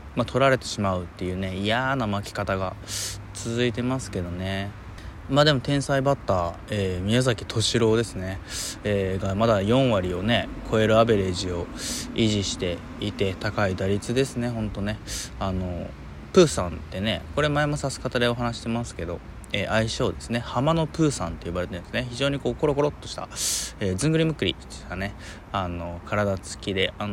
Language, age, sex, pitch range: Japanese, 20-39, male, 95-120 Hz